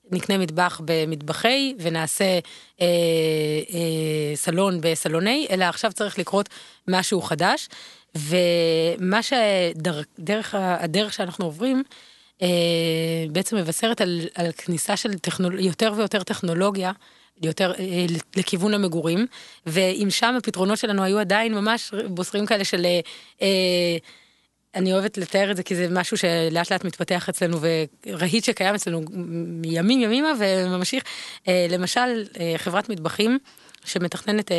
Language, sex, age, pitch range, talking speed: Hebrew, female, 20-39, 170-210 Hz, 115 wpm